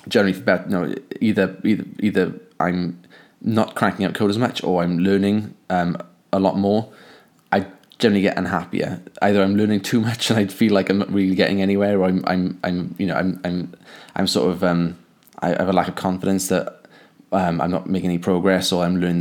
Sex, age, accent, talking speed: male, 20-39, British, 210 wpm